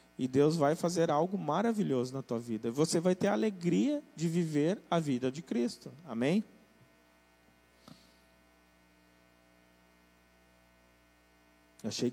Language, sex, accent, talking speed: Portuguese, male, Brazilian, 110 wpm